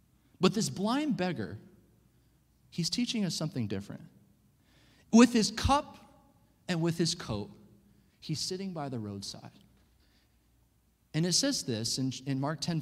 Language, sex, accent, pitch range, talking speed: English, male, American, 145-210 Hz, 130 wpm